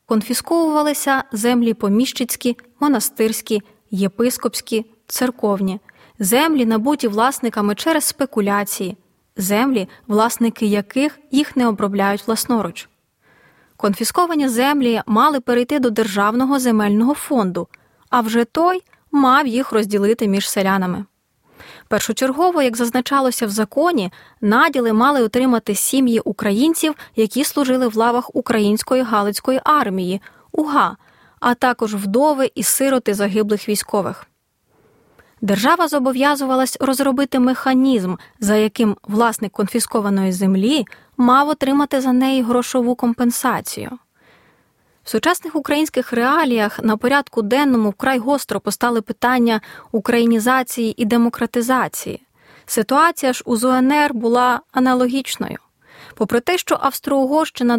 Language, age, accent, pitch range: Ukrainian, 20-39, native, 220-270 Hz